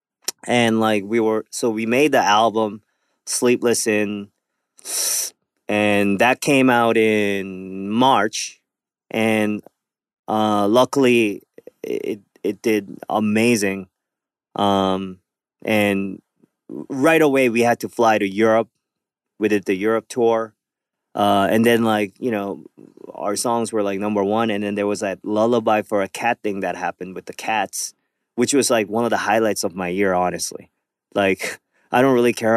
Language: English